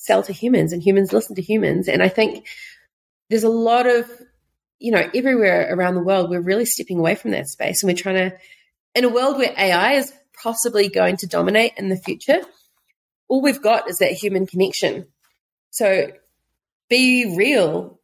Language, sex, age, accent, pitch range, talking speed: English, female, 30-49, Australian, 190-240 Hz, 185 wpm